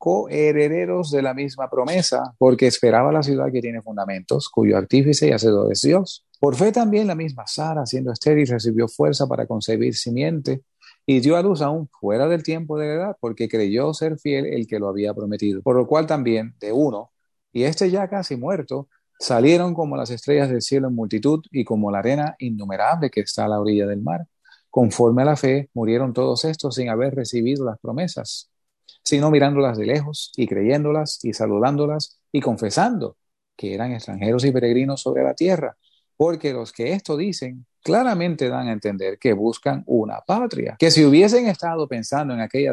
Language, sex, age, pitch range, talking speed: English, male, 30-49, 115-155 Hz, 185 wpm